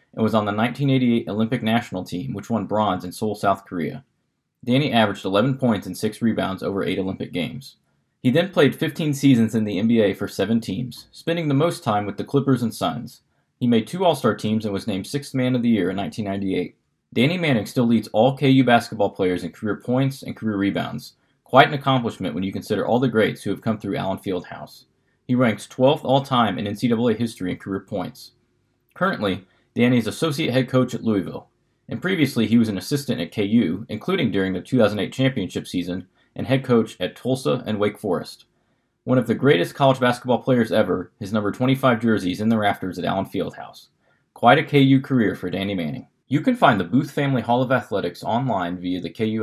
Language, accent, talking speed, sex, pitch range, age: English, American, 205 wpm, male, 100-130 Hz, 20-39